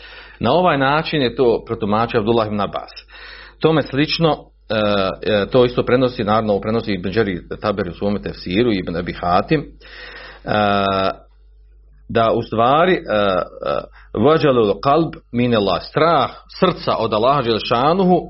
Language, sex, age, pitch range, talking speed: Croatian, male, 40-59, 110-150 Hz, 110 wpm